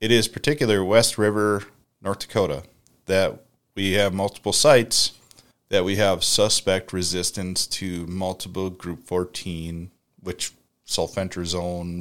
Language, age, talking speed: English, 30-49, 115 wpm